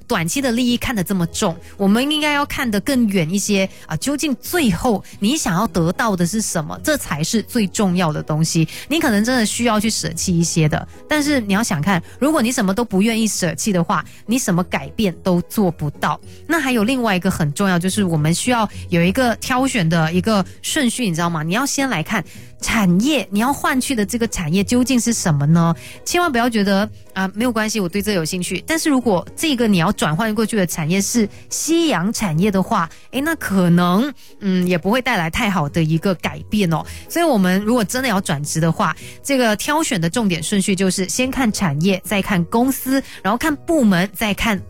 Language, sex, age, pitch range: Chinese, female, 30-49, 175-240 Hz